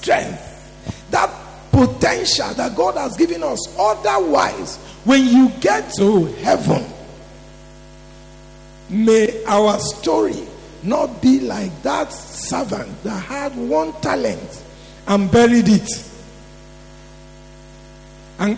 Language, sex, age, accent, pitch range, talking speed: English, male, 50-69, Nigerian, 185-255 Hz, 95 wpm